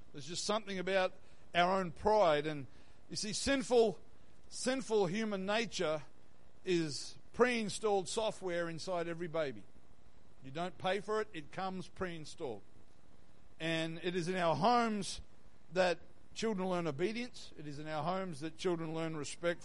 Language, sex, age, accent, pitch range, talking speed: English, male, 50-69, Australian, 155-195 Hz, 145 wpm